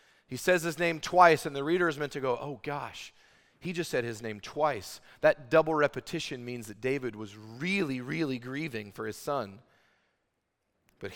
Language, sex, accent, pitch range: English, male, American, 110-155 Hz